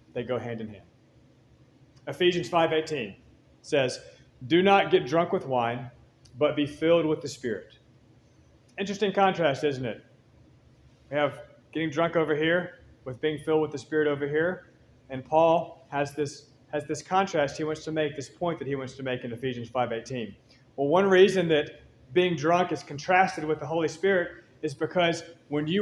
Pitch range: 145-180 Hz